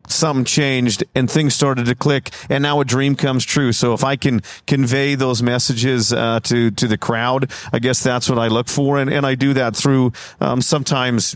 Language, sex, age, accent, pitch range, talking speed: English, male, 40-59, American, 115-135 Hz, 210 wpm